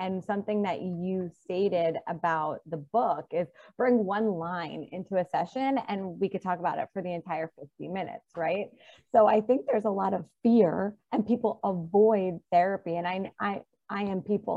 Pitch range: 170-215 Hz